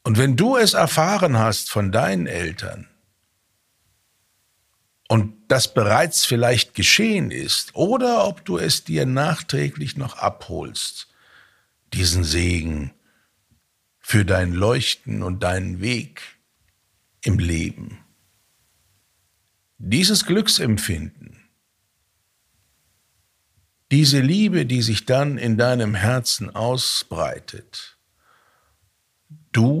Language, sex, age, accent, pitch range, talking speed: German, male, 60-79, German, 95-125 Hz, 90 wpm